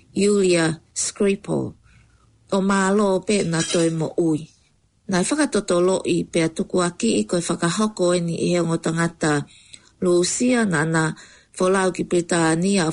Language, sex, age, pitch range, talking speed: English, female, 40-59, 165-195 Hz, 120 wpm